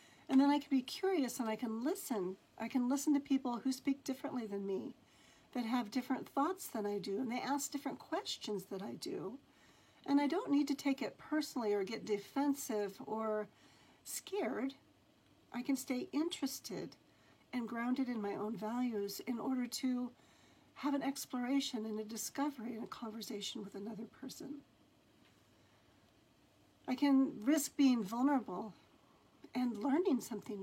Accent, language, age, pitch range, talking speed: American, English, 60-79, 220-280 Hz, 160 wpm